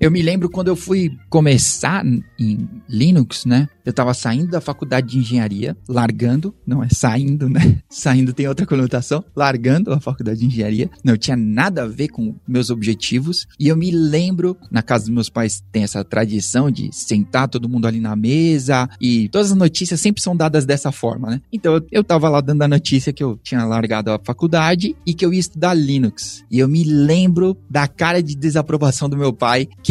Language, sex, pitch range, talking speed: Portuguese, male, 125-175 Hz, 200 wpm